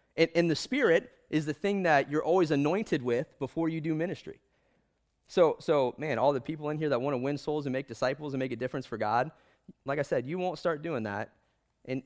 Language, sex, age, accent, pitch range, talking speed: English, male, 20-39, American, 110-145 Hz, 235 wpm